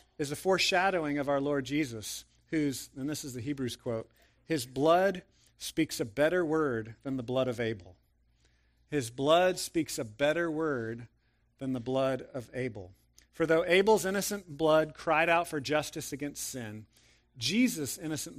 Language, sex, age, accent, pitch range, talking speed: English, male, 40-59, American, 100-150 Hz, 160 wpm